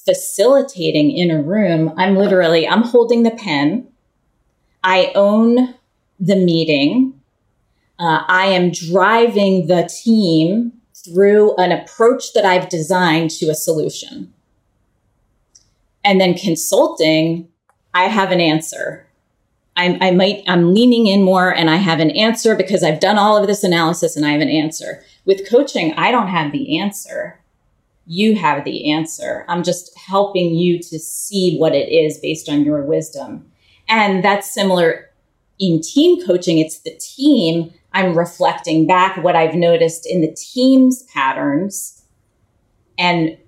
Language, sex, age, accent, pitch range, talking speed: English, female, 30-49, American, 160-200 Hz, 140 wpm